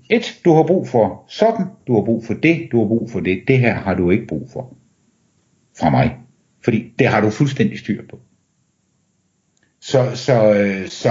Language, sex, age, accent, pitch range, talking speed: Danish, male, 60-79, native, 105-135 Hz, 185 wpm